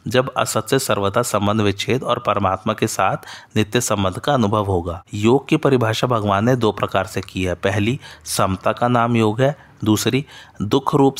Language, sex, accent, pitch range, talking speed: Hindi, male, native, 100-125 Hz, 180 wpm